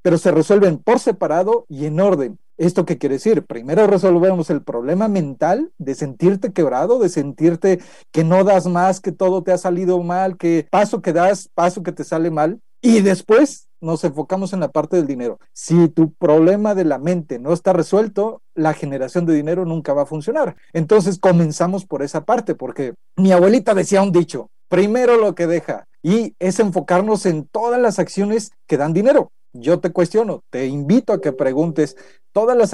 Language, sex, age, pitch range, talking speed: Spanish, male, 40-59, 160-205 Hz, 185 wpm